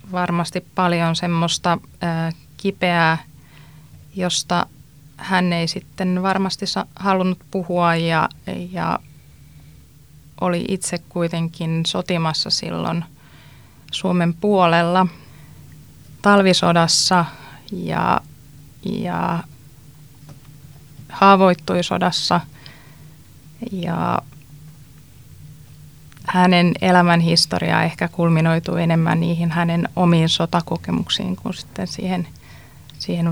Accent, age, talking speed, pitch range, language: native, 20-39, 70 wpm, 150-180 Hz, Finnish